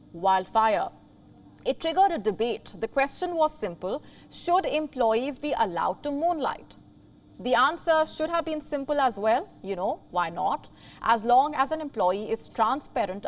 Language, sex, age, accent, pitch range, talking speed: English, female, 30-49, Indian, 230-310 Hz, 155 wpm